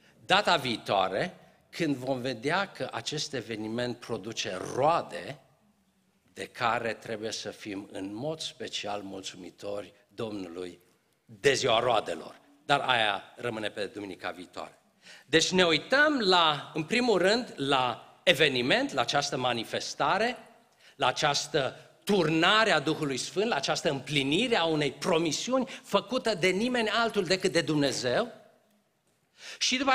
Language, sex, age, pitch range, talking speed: Romanian, male, 50-69, 130-205 Hz, 120 wpm